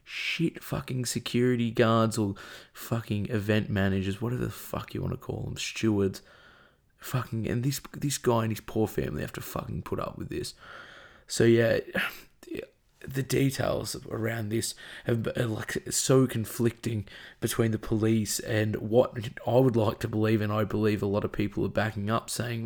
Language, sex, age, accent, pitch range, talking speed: English, male, 20-39, Australian, 105-120 Hz, 170 wpm